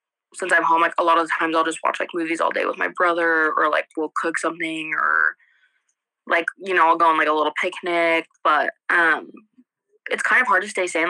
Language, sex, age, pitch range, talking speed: English, female, 20-39, 165-205 Hz, 240 wpm